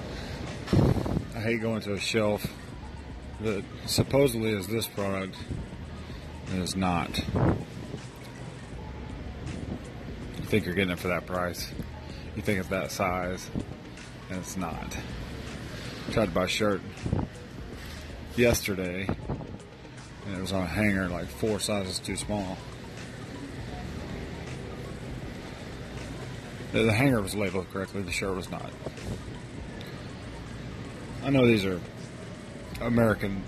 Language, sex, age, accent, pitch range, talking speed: English, male, 40-59, American, 95-110 Hz, 110 wpm